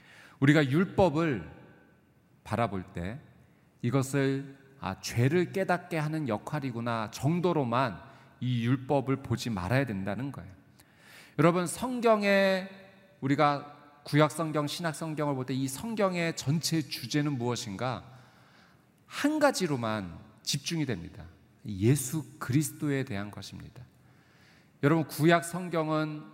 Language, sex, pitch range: Korean, male, 120-165 Hz